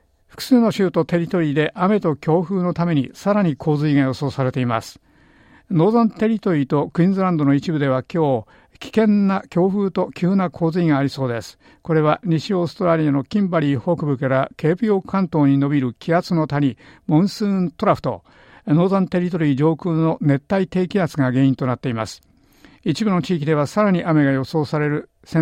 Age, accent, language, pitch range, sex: 50-69, native, Japanese, 140-175 Hz, male